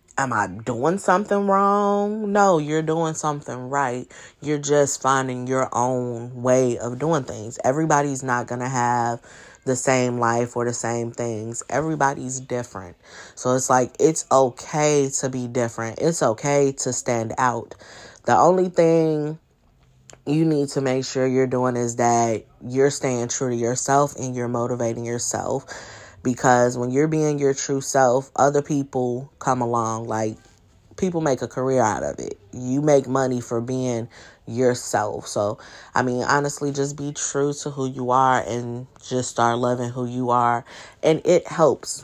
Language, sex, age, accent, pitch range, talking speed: English, female, 20-39, American, 120-140 Hz, 160 wpm